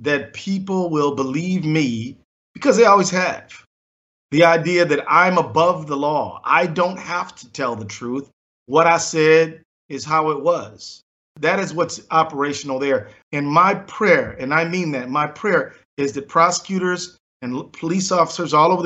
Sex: male